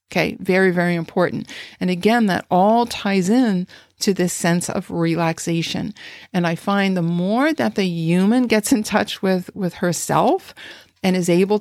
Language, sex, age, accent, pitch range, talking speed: English, female, 50-69, American, 170-205 Hz, 165 wpm